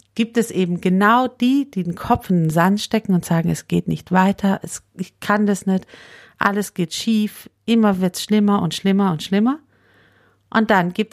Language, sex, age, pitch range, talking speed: German, female, 50-69, 160-200 Hz, 200 wpm